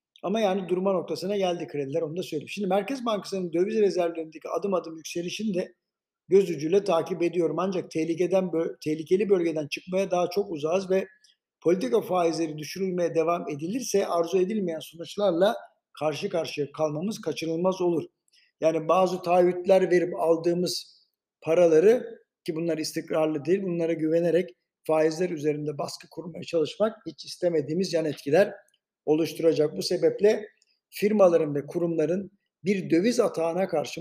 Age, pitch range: 60-79, 160-195 Hz